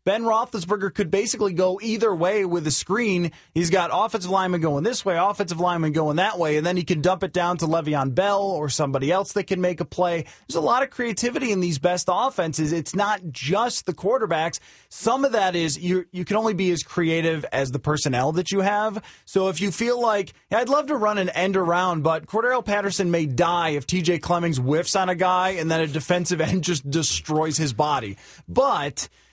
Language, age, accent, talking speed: English, 30-49, American, 215 wpm